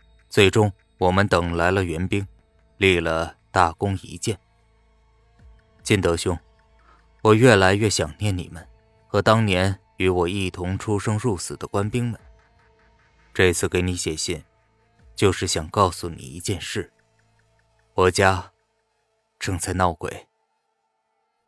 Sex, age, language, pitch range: male, 20-39, Chinese, 90-115 Hz